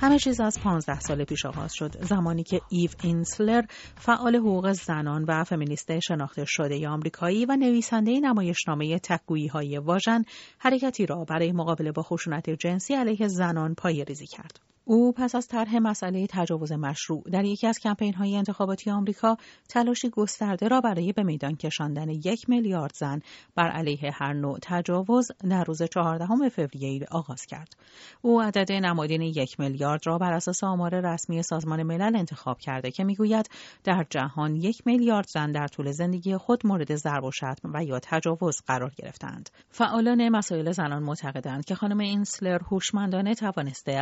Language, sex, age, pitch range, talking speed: Persian, female, 40-59, 155-210 Hz, 160 wpm